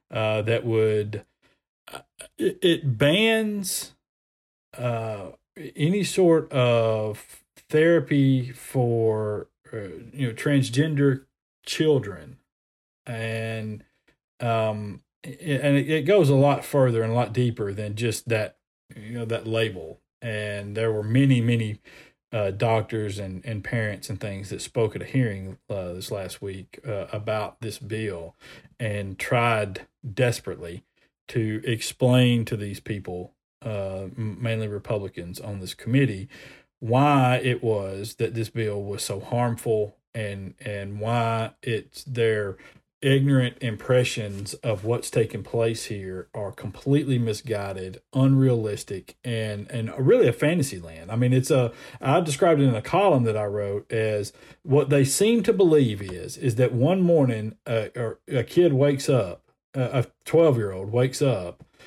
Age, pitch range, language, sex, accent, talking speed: 40-59, 105-130 Hz, English, male, American, 135 wpm